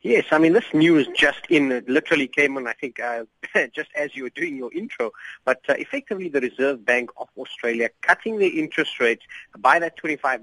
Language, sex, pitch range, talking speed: English, male, 120-160 Hz, 200 wpm